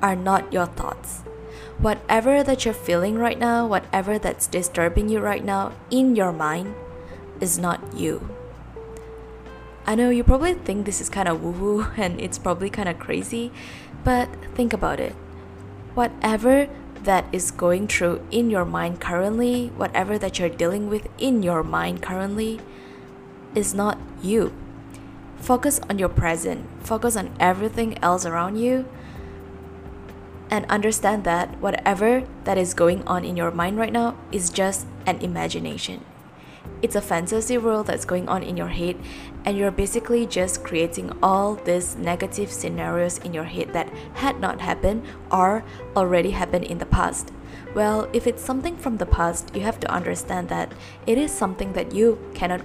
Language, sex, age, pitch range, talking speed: English, female, 10-29, 155-220 Hz, 160 wpm